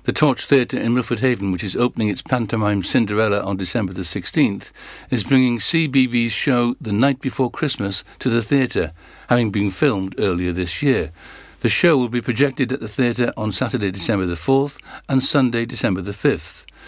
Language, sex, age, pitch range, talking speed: English, male, 60-79, 105-135 Hz, 180 wpm